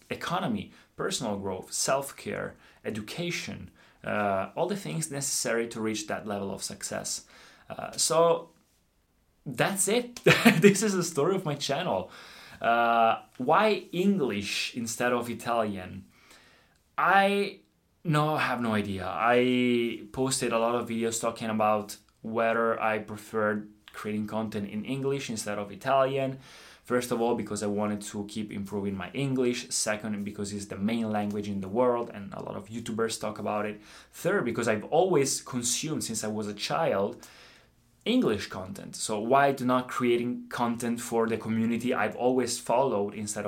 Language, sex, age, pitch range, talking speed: Italian, male, 20-39, 105-130 Hz, 150 wpm